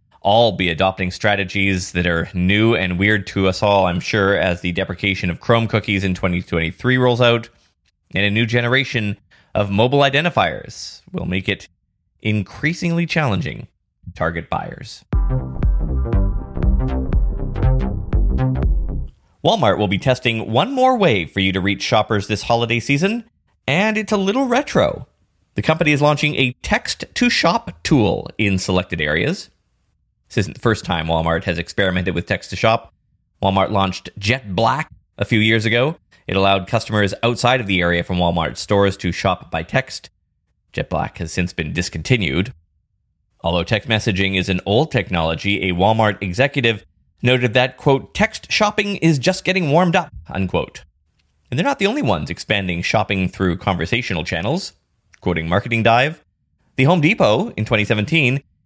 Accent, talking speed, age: American, 150 wpm, 20-39